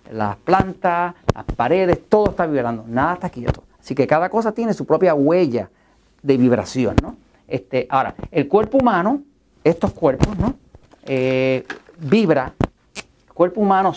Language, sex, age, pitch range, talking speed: Spanish, male, 50-69, 130-180 Hz, 145 wpm